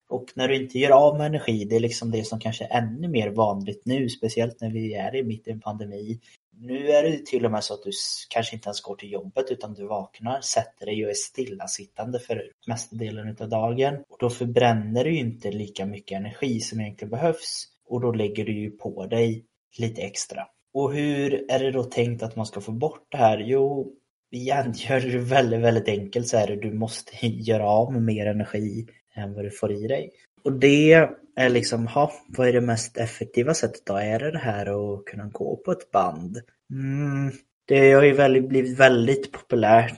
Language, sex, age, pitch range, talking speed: Swedish, male, 20-39, 105-125 Hz, 215 wpm